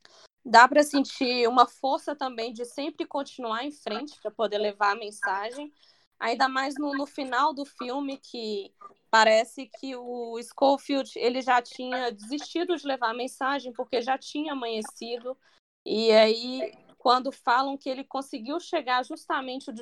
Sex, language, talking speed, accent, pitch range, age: female, Portuguese, 145 wpm, Brazilian, 225-275 Hz, 20-39